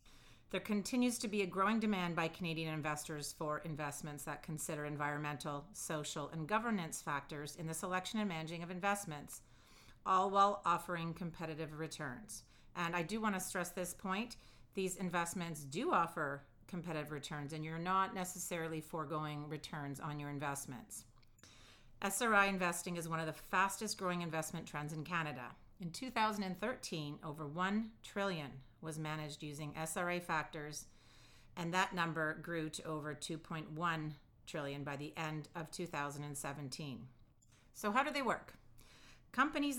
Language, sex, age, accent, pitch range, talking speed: English, female, 40-59, American, 150-185 Hz, 145 wpm